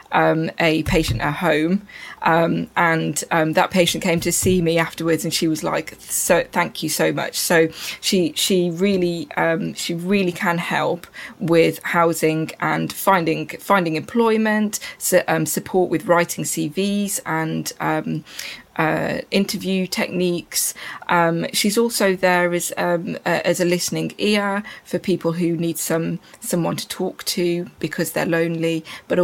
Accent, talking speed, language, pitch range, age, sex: British, 150 wpm, English, 165-190 Hz, 20-39, female